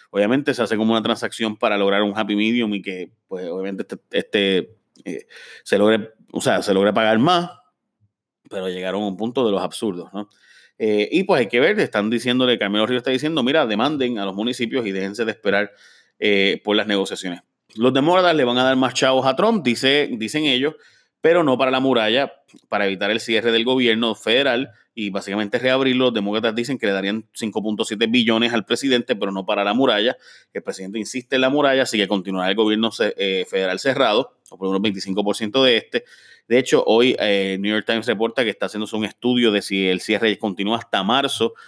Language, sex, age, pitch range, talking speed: Spanish, male, 30-49, 100-125 Hz, 205 wpm